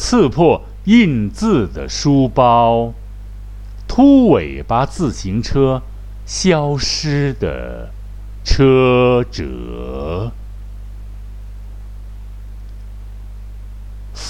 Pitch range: 100-115 Hz